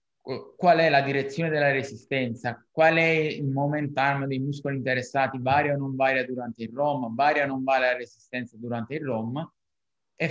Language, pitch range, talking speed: Italian, 130-150 Hz, 180 wpm